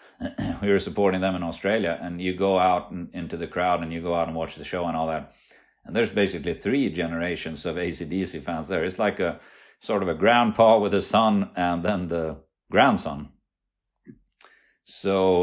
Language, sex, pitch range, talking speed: German, male, 85-100 Hz, 185 wpm